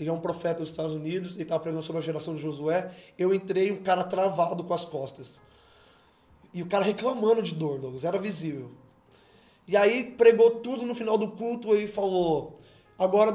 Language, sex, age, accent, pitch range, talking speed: Portuguese, male, 20-39, Brazilian, 165-215 Hz, 195 wpm